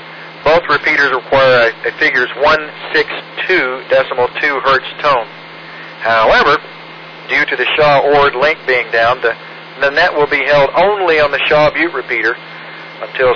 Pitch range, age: 125-175 Hz, 40-59